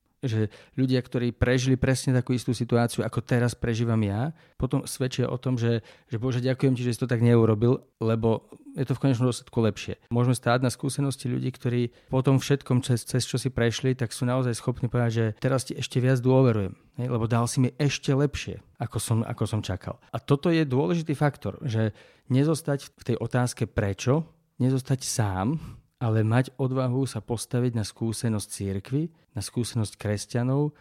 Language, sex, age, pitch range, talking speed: Slovak, male, 40-59, 110-130 Hz, 180 wpm